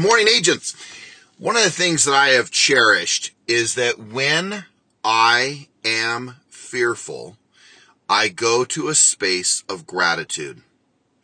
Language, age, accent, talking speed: English, 30-49, American, 125 wpm